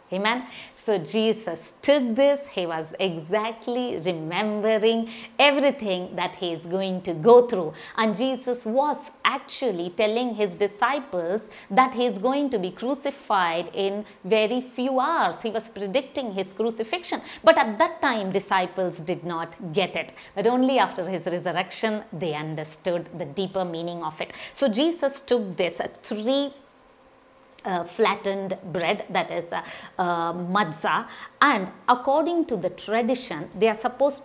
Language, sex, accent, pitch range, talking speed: English, female, Indian, 185-255 Hz, 145 wpm